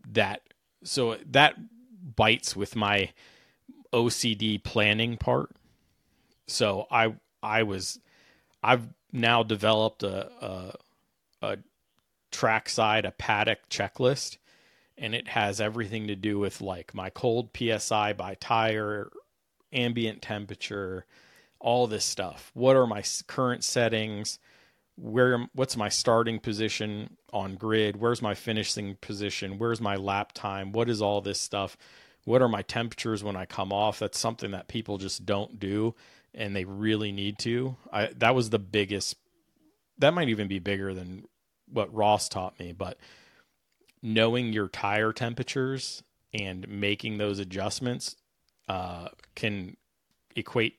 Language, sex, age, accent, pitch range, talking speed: English, male, 40-59, American, 100-115 Hz, 135 wpm